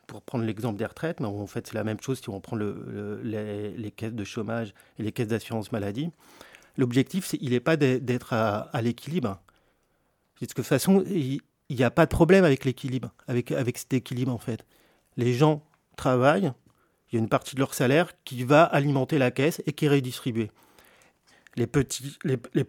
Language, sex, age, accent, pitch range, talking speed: French, male, 30-49, French, 120-155 Hz, 205 wpm